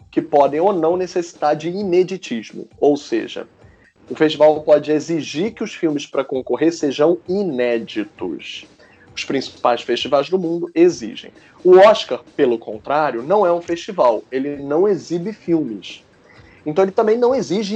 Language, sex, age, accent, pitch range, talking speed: Portuguese, male, 20-39, Brazilian, 135-195 Hz, 145 wpm